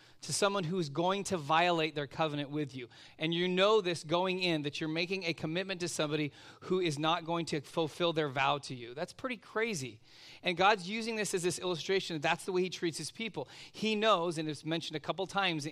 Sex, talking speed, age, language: male, 225 wpm, 40-59, English